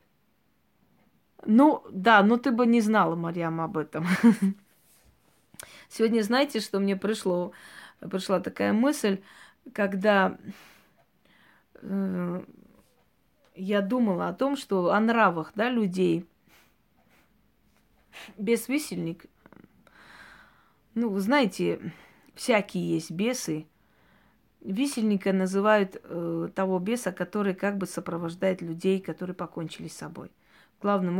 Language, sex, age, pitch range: Russian, female, 20-39, 180-225 Hz